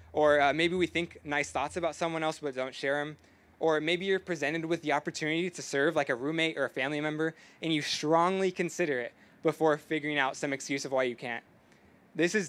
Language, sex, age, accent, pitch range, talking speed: English, male, 20-39, American, 140-170 Hz, 220 wpm